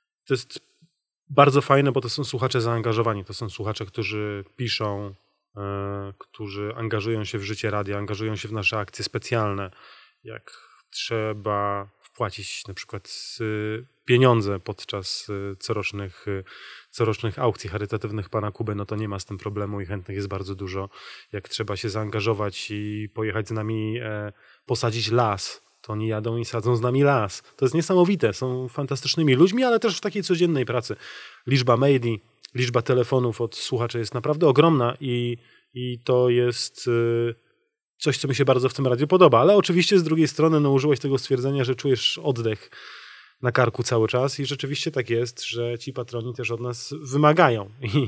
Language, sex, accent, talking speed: Polish, male, native, 165 wpm